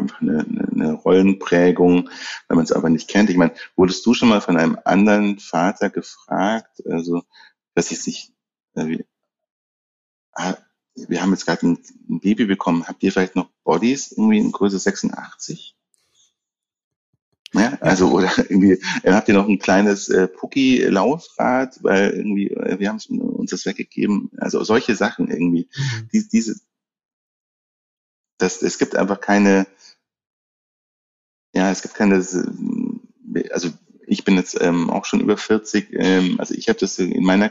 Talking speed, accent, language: 145 wpm, German, German